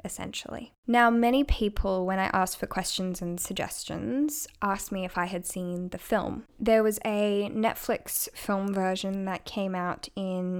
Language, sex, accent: English, female, Australian